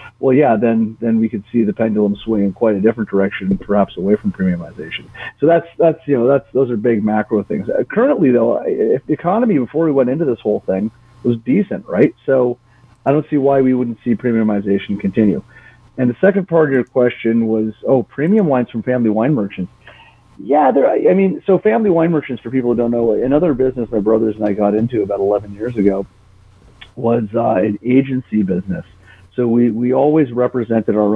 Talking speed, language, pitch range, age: 200 wpm, English, 105-125 Hz, 40-59